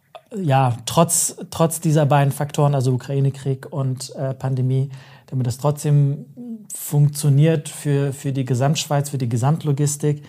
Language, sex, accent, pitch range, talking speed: German, male, German, 130-150 Hz, 130 wpm